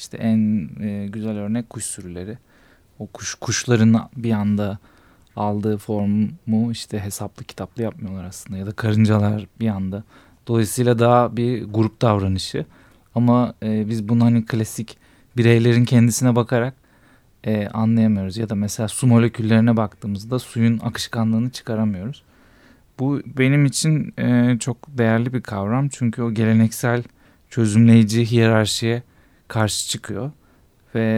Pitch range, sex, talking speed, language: 105-120 Hz, male, 115 wpm, Turkish